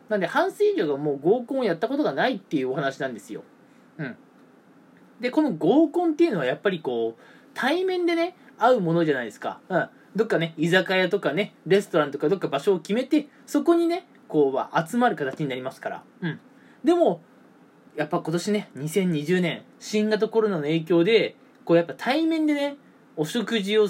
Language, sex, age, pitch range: Japanese, male, 20-39, 170-275 Hz